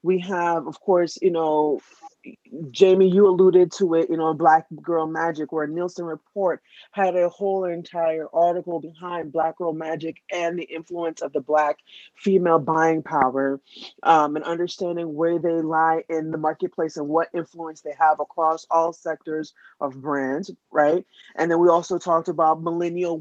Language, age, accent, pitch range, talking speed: English, 30-49, American, 155-175 Hz, 165 wpm